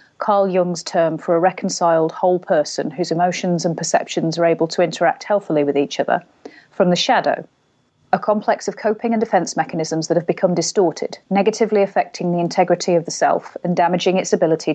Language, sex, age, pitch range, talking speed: English, female, 30-49, 165-195 Hz, 185 wpm